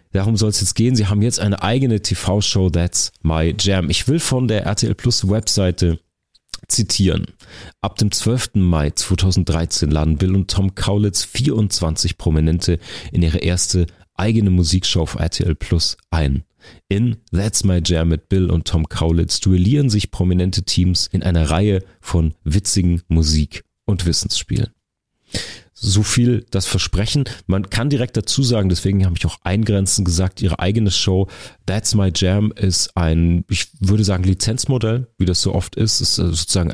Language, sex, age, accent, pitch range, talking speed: German, male, 40-59, German, 90-110 Hz, 165 wpm